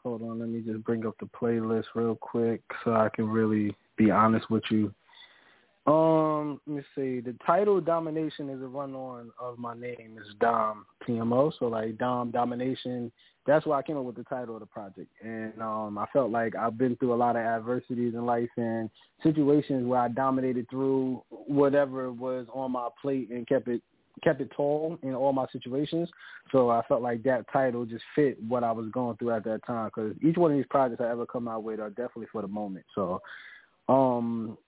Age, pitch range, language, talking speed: 20-39, 115-140 Hz, English, 205 wpm